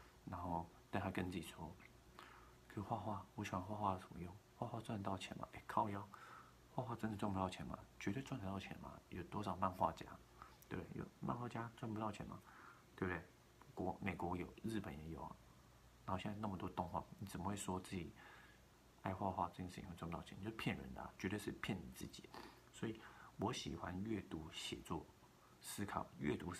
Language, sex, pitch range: Chinese, male, 85-105 Hz